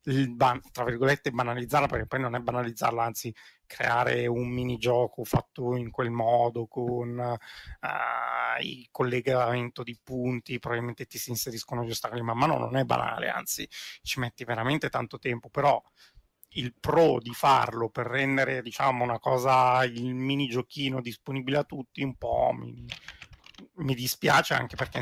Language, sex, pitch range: Italian, male, 120-135 Hz